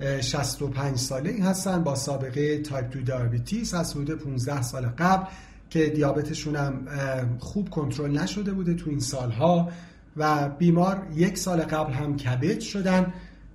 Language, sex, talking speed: Persian, male, 140 wpm